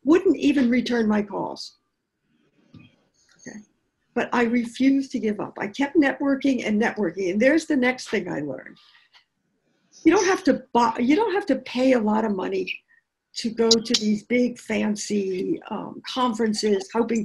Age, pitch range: 60-79, 210-275 Hz